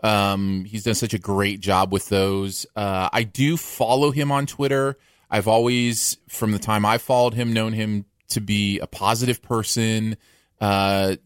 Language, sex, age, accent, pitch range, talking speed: English, male, 30-49, American, 105-145 Hz, 170 wpm